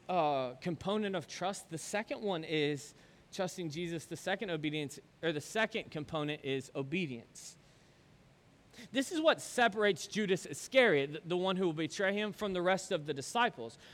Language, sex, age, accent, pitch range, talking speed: English, male, 30-49, American, 155-215 Hz, 160 wpm